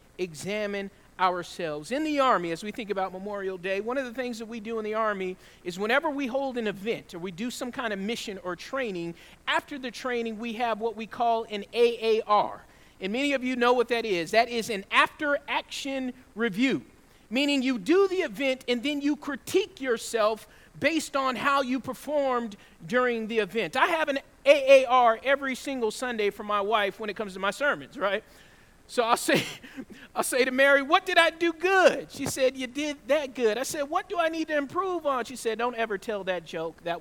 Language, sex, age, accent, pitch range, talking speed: English, male, 40-59, American, 210-275 Hz, 210 wpm